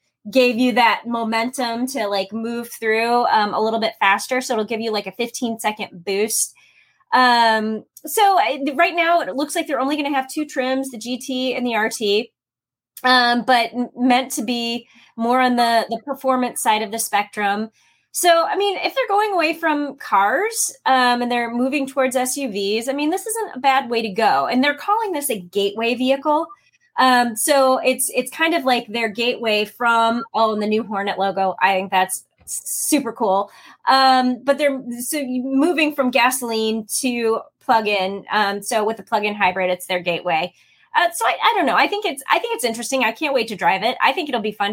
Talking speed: 200 wpm